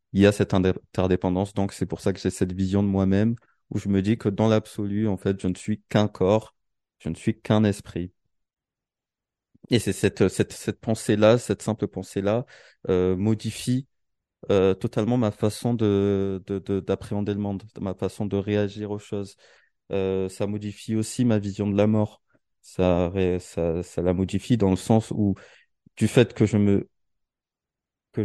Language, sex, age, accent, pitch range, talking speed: French, male, 20-39, French, 95-110 Hz, 180 wpm